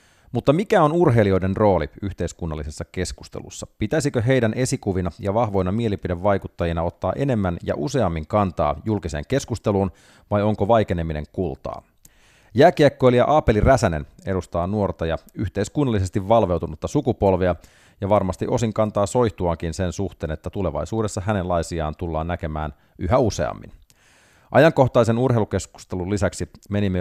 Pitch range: 85-110 Hz